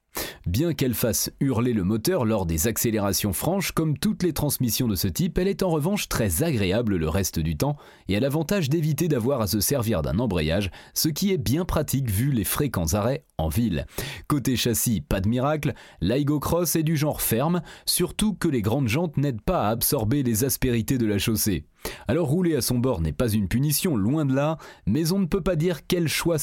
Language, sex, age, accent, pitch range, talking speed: French, male, 30-49, French, 115-170 Hz, 210 wpm